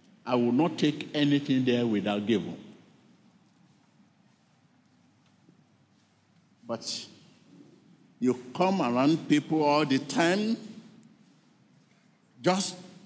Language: English